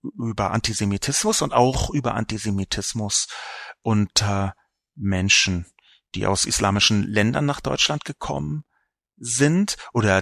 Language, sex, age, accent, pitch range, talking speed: German, male, 40-59, German, 105-140 Hz, 100 wpm